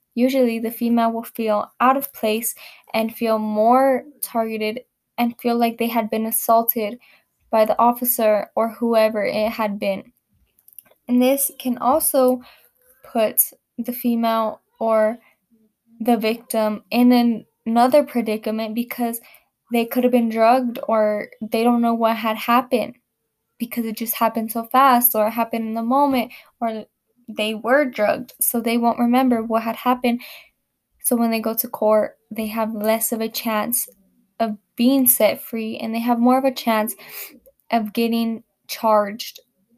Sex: female